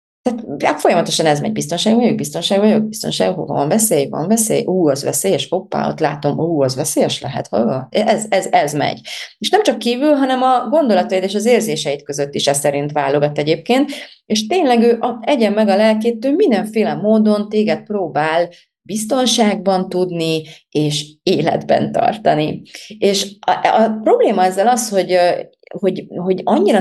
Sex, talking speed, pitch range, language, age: female, 165 wpm, 170-225 Hz, Hungarian, 30-49